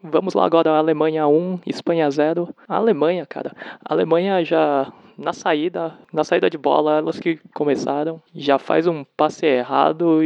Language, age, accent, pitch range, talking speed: Portuguese, 20-39, Brazilian, 140-170 Hz, 160 wpm